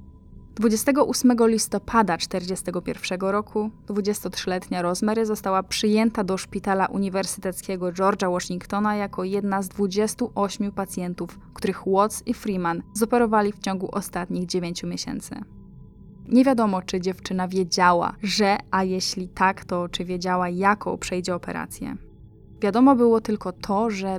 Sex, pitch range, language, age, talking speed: female, 185-215 Hz, Polish, 10-29, 120 wpm